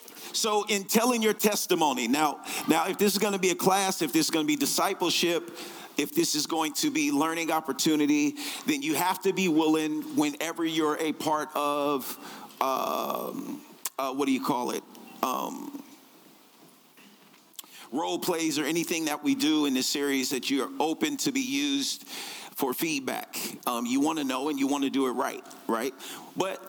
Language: English